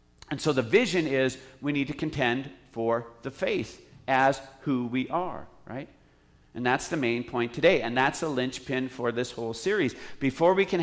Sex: male